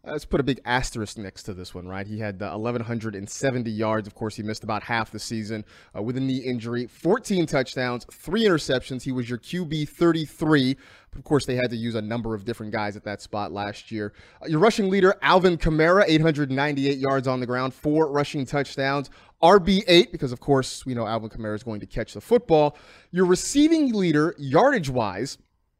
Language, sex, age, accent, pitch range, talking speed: English, male, 30-49, American, 115-165 Hz, 190 wpm